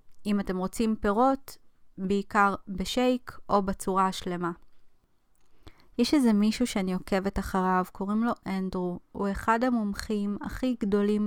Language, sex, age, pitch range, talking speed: Hebrew, female, 20-39, 185-215 Hz, 120 wpm